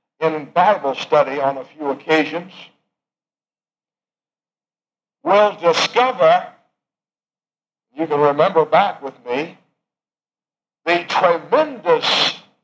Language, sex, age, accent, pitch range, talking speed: English, male, 60-79, American, 170-235 Hz, 80 wpm